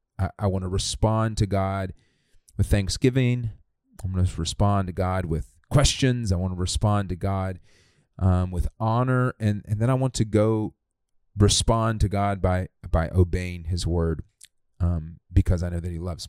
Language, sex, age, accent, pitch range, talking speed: English, male, 30-49, American, 90-105 Hz, 175 wpm